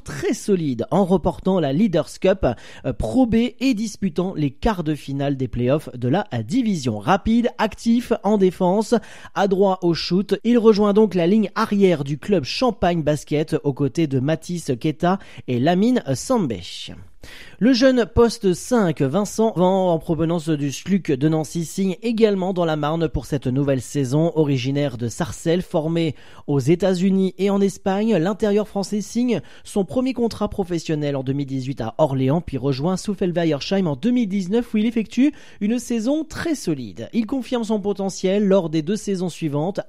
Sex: male